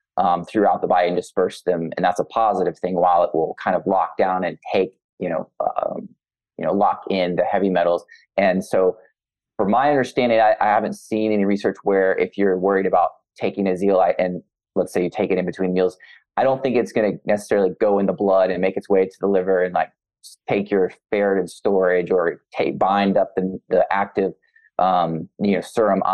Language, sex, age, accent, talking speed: English, male, 20-39, American, 215 wpm